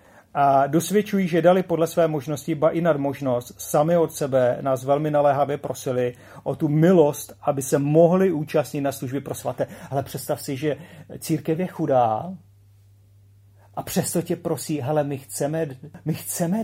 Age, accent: 40-59, native